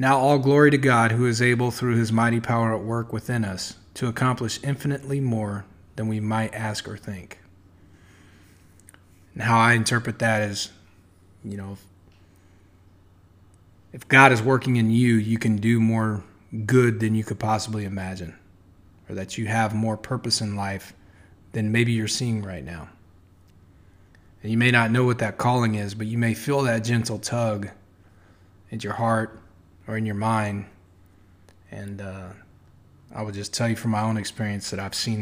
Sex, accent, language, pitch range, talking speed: male, American, English, 95-115 Hz, 170 wpm